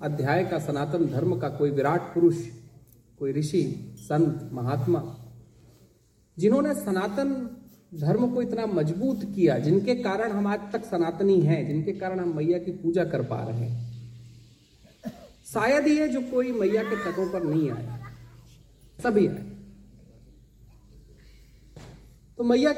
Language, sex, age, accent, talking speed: Hindi, male, 40-59, native, 100 wpm